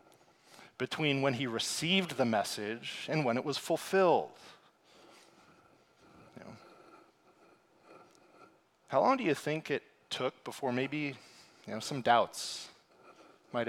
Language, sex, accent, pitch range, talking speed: English, male, American, 125-155 Hz, 100 wpm